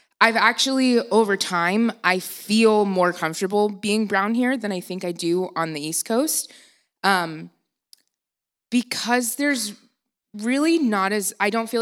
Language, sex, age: English, female, 20-39